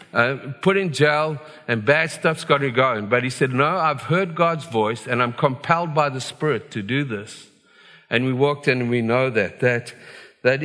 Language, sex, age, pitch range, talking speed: English, male, 50-69, 120-165 Hz, 210 wpm